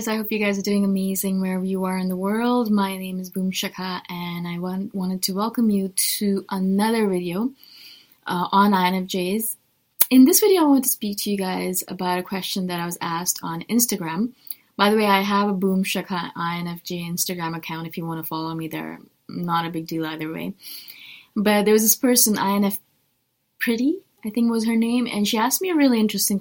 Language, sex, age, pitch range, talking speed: English, female, 20-39, 170-215 Hz, 210 wpm